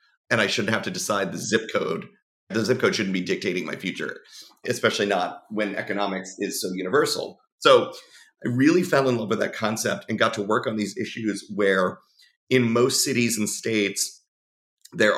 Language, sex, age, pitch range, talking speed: English, male, 30-49, 100-120 Hz, 185 wpm